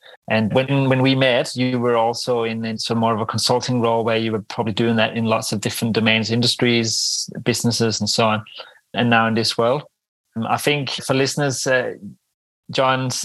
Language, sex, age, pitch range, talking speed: English, male, 30-49, 115-130 Hz, 195 wpm